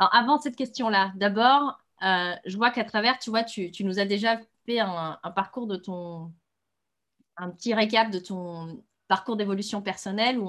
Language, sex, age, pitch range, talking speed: French, female, 20-39, 180-220 Hz, 175 wpm